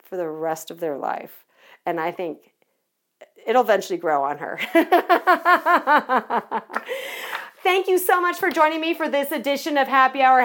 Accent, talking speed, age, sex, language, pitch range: American, 155 wpm, 40-59, female, English, 245-360 Hz